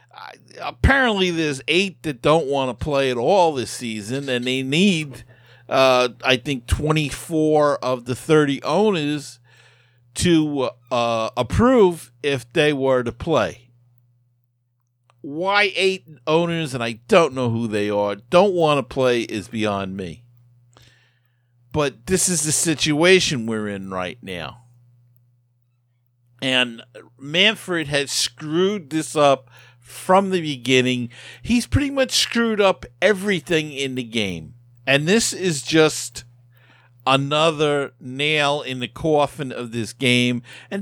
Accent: American